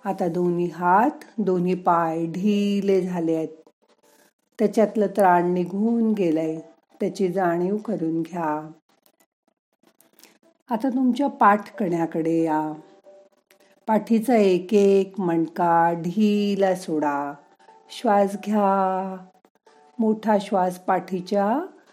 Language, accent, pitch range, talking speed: Marathi, native, 180-215 Hz, 90 wpm